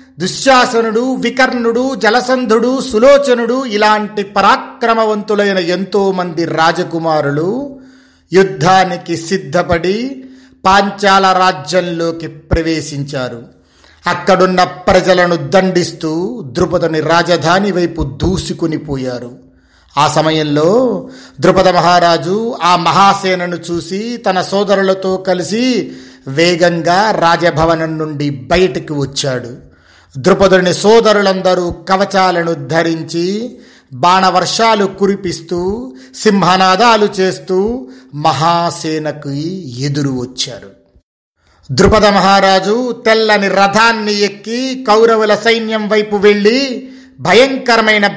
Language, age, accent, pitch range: Telugu, 40-59, native, 165-210 Hz